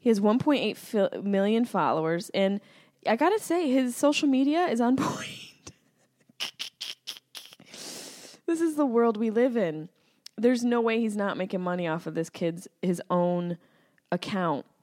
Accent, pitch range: American, 175-235 Hz